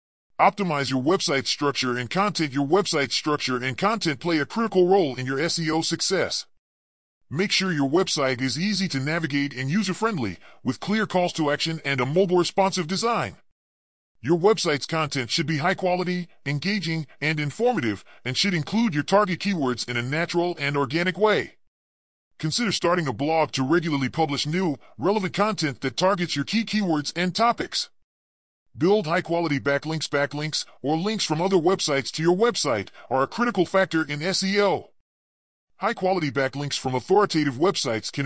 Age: 40-59